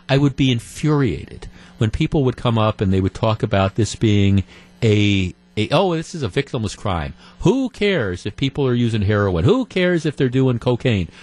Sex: male